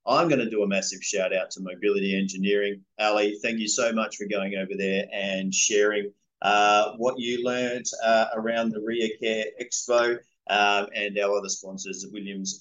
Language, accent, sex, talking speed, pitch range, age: English, Australian, male, 175 wpm, 100-125 Hz, 30-49